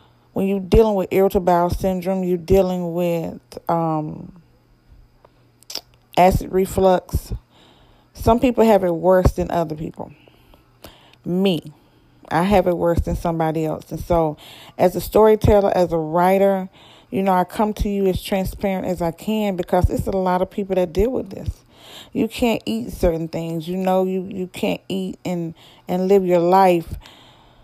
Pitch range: 170-195 Hz